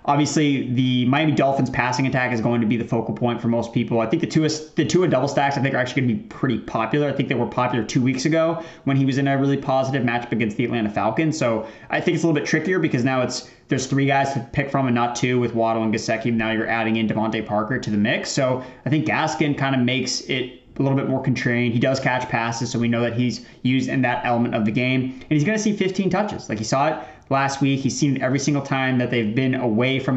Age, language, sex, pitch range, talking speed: 20-39, English, male, 120-140 Hz, 280 wpm